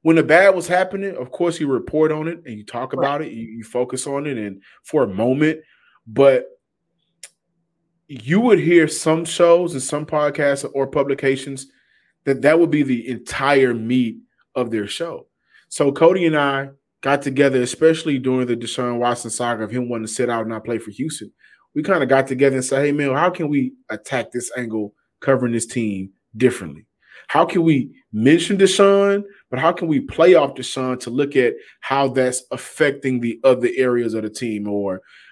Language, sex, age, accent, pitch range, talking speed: English, male, 20-39, American, 120-155 Hz, 190 wpm